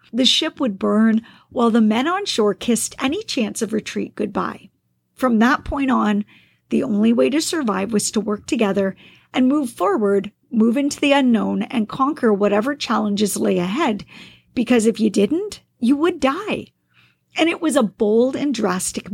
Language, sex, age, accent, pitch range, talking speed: English, female, 50-69, American, 205-260 Hz, 170 wpm